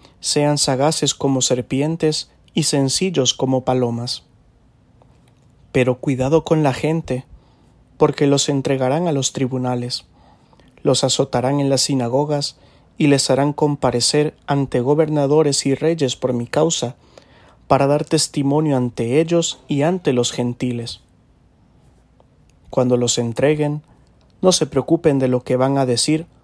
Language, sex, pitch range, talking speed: English, male, 125-155 Hz, 125 wpm